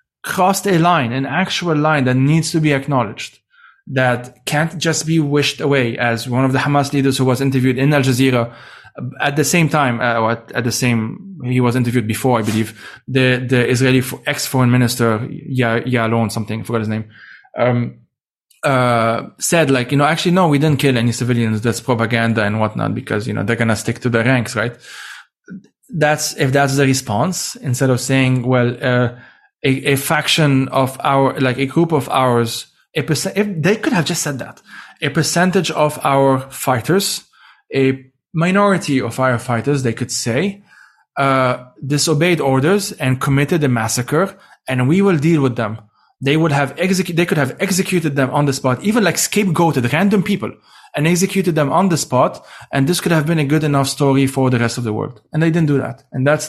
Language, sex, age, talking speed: English, male, 20-39, 195 wpm